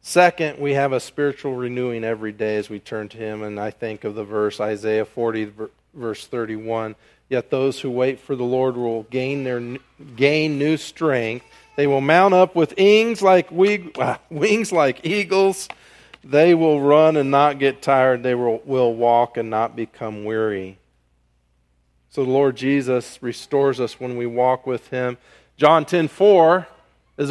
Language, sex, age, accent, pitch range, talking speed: English, male, 40-59, American, 110-160 Hz, 165 wpm